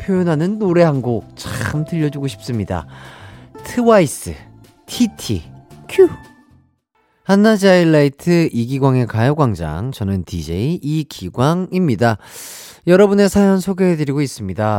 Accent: native